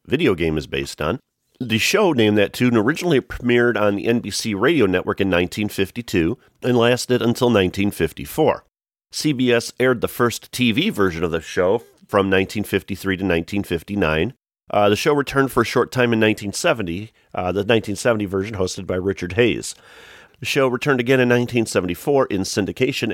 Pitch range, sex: 90-115 Hz, male